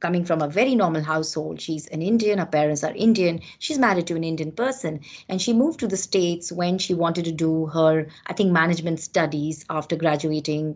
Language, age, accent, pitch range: English, 30-49, Indian, 155-190 Hz